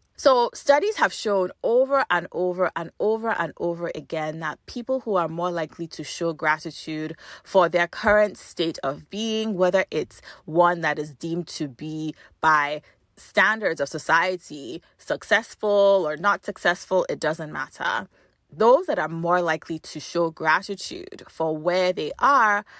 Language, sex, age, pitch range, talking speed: English, female, 20-39, 160-225 Hz, 155 wpm